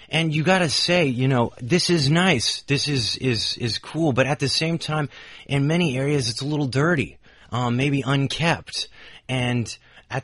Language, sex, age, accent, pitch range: Chinese, male, 30-49, American, 115-155 Hz